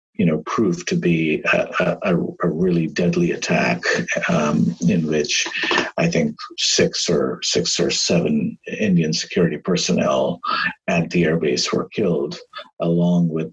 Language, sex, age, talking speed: English, male, 50-69, 135 wpm